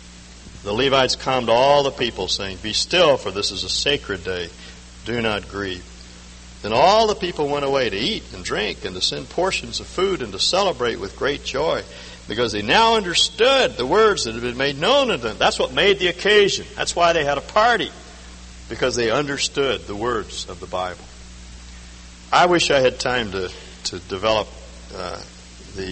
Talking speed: 190 wpm